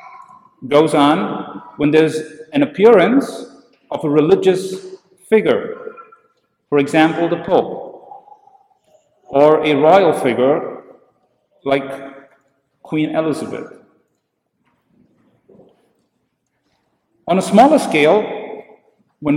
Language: English